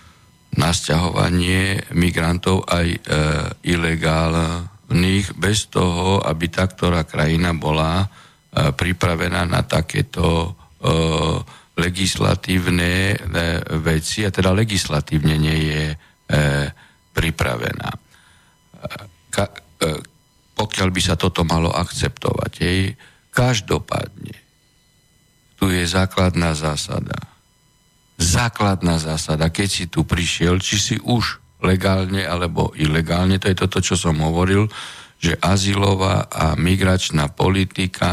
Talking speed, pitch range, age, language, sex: 100 wpm, 85-100 Hz, 60-79, Slovak, male